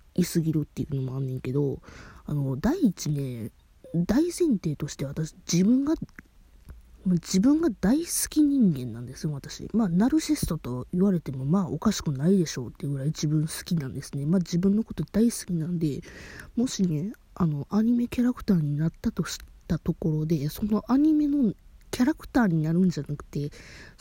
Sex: female